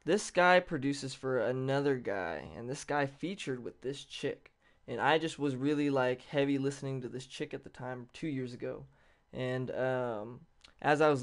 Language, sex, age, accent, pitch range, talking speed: English, male, 20-39, American, 125-140 Hz, 185 wpm